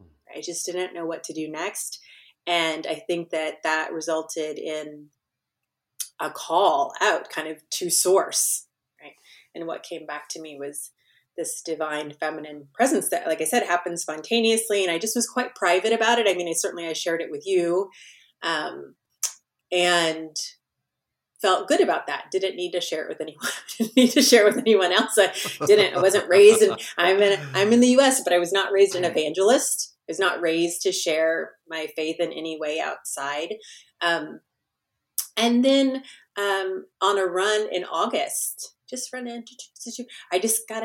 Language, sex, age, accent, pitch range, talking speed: English, female, 30-49, American, 165-215 Hz, 180 wpm